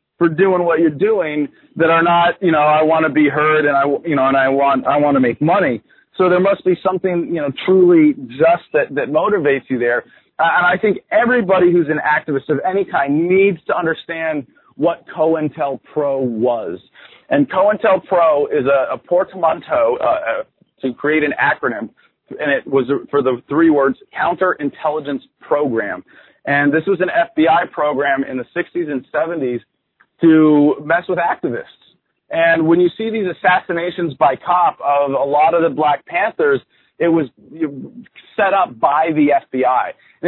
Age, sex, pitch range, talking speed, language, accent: 30-49, male, 145-190 Hz, 175 wpm, English, American